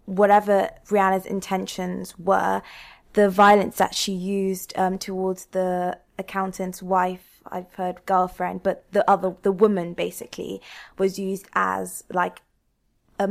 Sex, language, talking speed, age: female, English, 125 wpm, 20-39